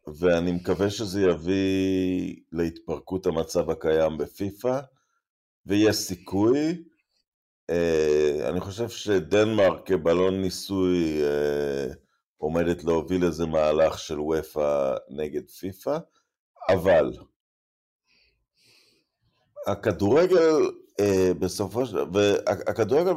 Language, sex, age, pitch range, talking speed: Hebrew, male, 50-69, 85-110 Hz, 65 wpm